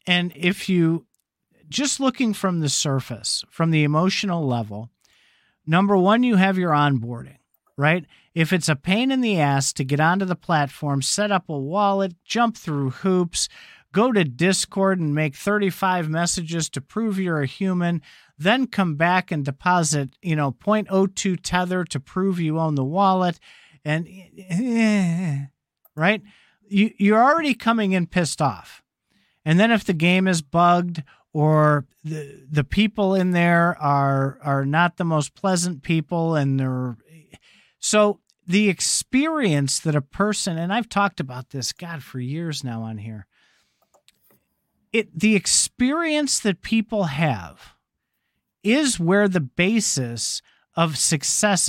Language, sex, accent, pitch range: English, male, American, 150-200 Hz